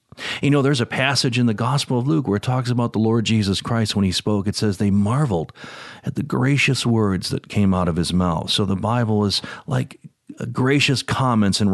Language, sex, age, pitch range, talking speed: English, male, 50-69, 110-145 Hz, 220 wpm